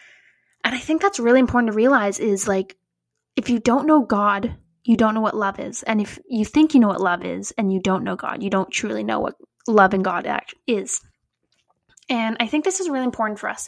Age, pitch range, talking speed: 10-29, 205-260 Hz, 230 wpm